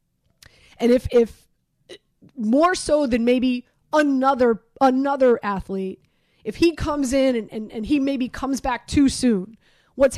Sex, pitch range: female, 215-260 Hz